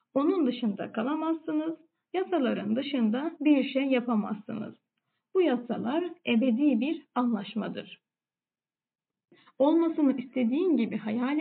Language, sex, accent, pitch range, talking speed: Turkish, female, native, 225-300 Hz, 90 wpm